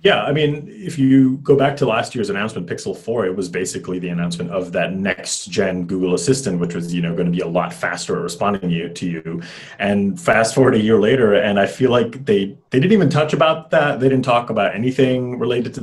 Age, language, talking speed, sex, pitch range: 30-49, English, 225 wpm, male, 95-140 Hz